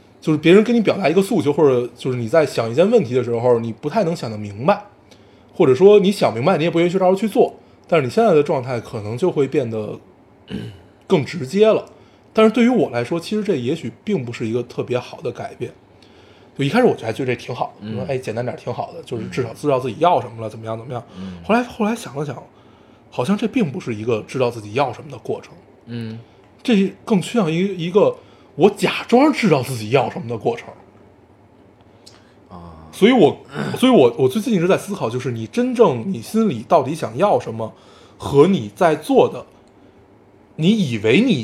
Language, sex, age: Chinese, male, 20-39